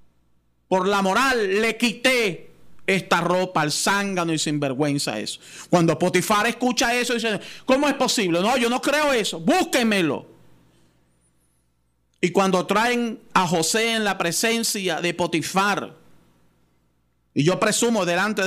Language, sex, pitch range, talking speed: Spanish, male, 145-220 Hz, 130 wpm